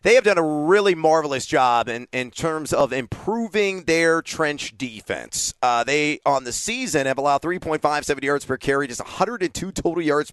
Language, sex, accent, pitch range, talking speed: English, male, American, 130-160 Hz, 175 wpm